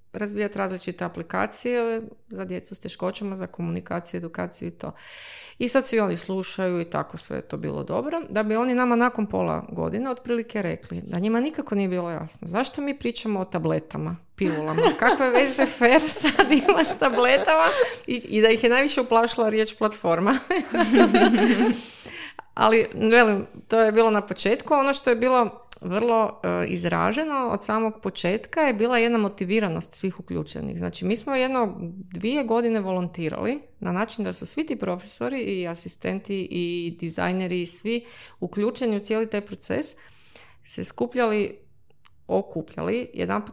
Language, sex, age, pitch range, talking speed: Croatian, female, 30-49, 180-240 Hz, 155 wpm